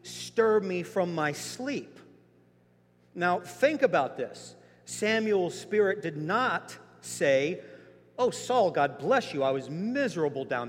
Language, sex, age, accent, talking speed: English, male, 50-69, American, 130 wpm